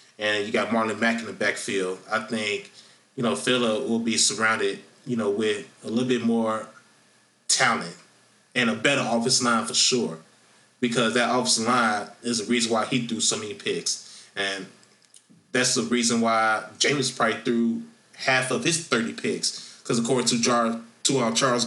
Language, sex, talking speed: English, male, 170 wpm